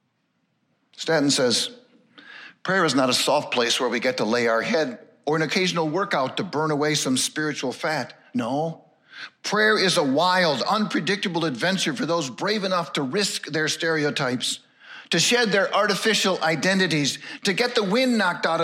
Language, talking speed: English, 165 wpm